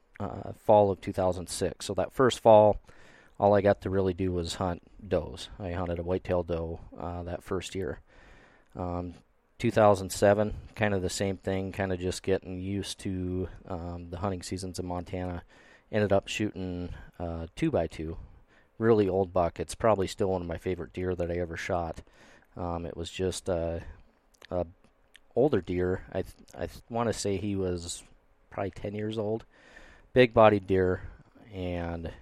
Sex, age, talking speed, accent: male, 30-49, 165 wpm, American